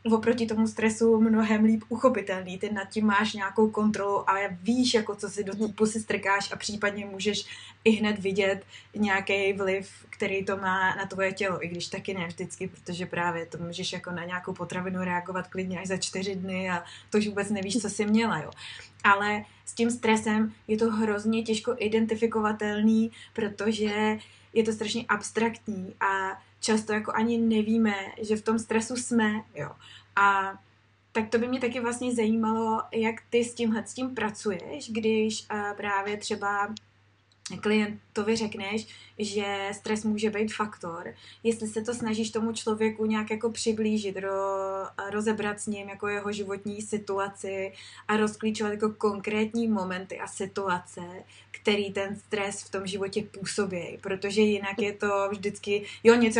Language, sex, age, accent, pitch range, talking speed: Czech, female, 20-39, native, 195-220 Hz, 150 wpm